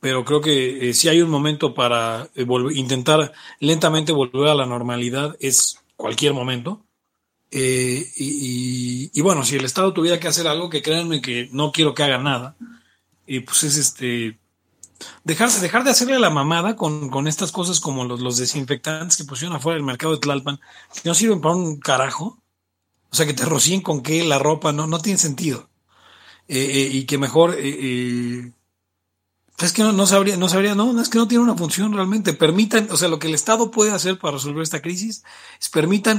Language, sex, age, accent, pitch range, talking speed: Italian, male, 40-59, Mexican, 130-175 Hz, 200 wpm